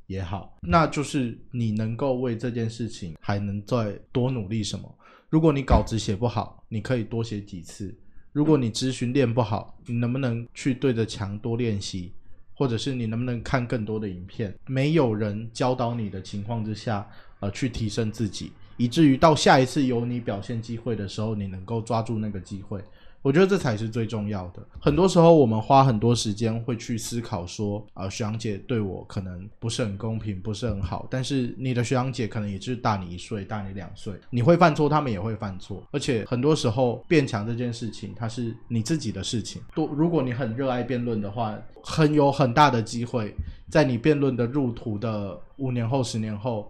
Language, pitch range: Chinese, 105-130 Hz